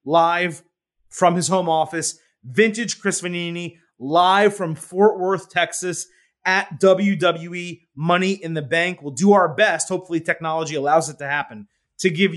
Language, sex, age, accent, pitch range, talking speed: English, male, 30-49, American, 145-175 Hz, 150 wpm